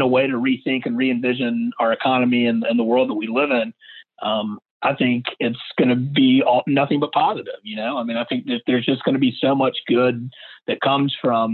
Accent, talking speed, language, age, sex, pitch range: American, 225 wpm, English, 40-59, male, 110-130 Hz